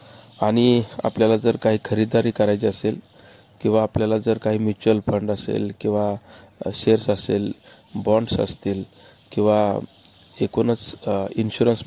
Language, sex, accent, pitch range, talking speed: English, male, Indian, 105-120 Hz, 120 wpm